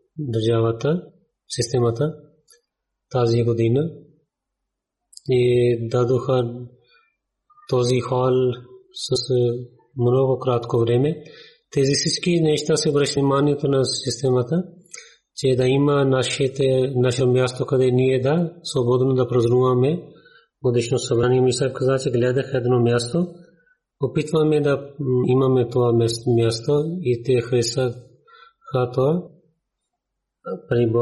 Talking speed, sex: 95 wpm, male